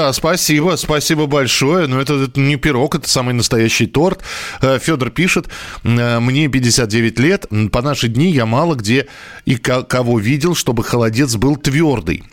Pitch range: 110-145 Hz